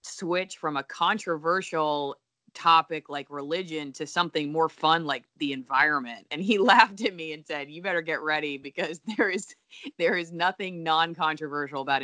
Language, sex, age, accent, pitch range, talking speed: English, female, 20-39, American, 140-160 Hz, 165 wpm